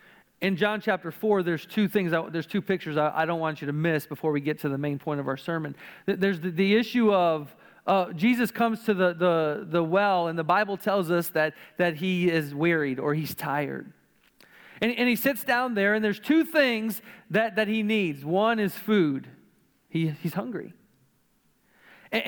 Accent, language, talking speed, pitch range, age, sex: American, English, 200 wpm, 165-225 Hz, 40-59, male